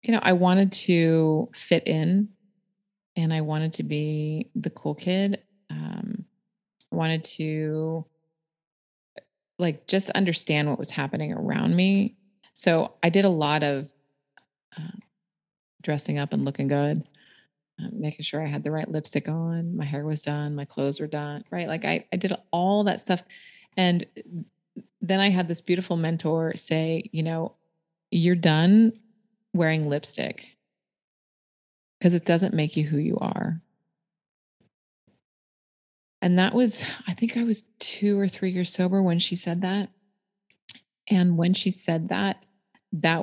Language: English